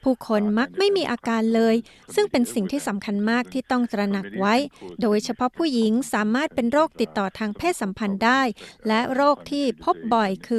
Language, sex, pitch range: Thai, female, 210-255 Hz